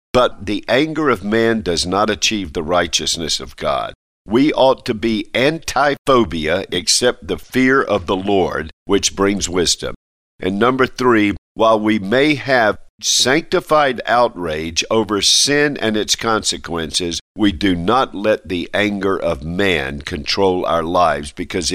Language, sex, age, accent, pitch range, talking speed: English, male, 50-69, American, 90-115 Hz, 145 wpm